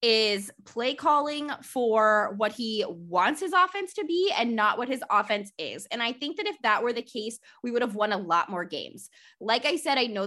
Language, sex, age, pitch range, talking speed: English, female, 20-39, 215-290 Hz, 230 wpm